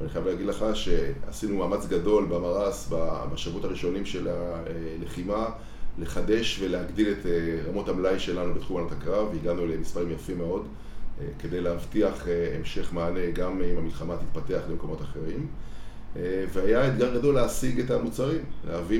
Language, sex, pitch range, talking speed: Hebrew, male, 85-105 Hz, 135 wpm